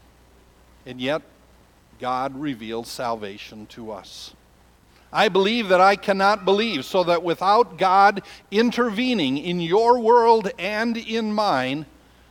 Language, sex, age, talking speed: English, male, 60-79, 115 wpm